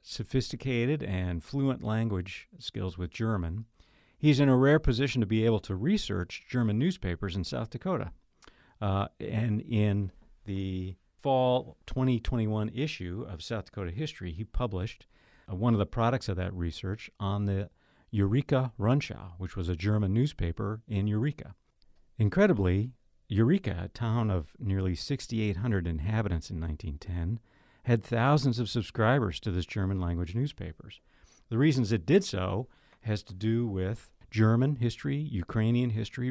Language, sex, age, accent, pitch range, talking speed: English, male, 50-69, American, 95-120 Hz, 140 wpm